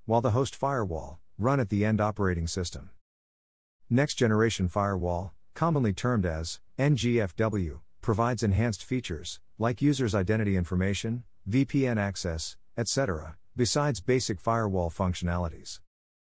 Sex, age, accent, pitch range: male, 50-69, American, 90-120 Hz